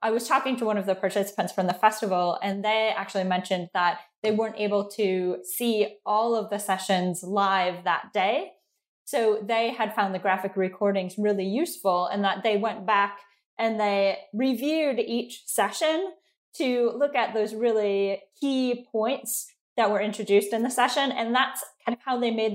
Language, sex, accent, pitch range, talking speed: English, female, American, 190-225 Hz, 180 wpm